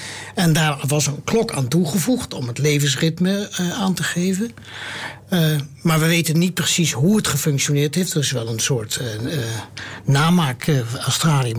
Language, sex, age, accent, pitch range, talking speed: Dutch, male, 60-79, Dutch, 135-180 Hz, 175 wpm